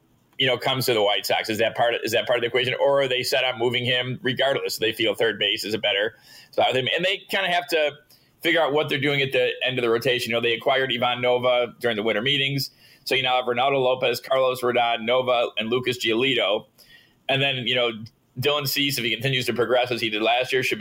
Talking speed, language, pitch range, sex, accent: 260 wpm, English, 120-140 Hz, male, American